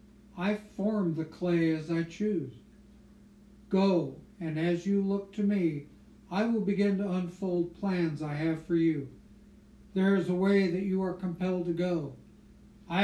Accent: American